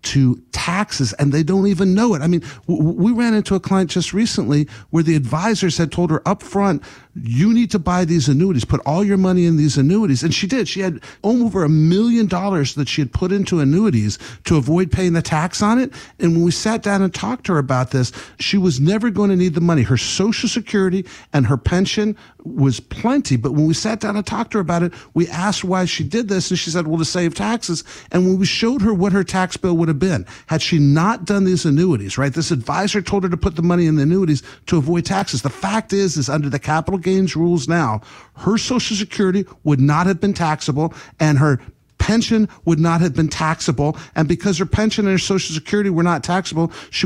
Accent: American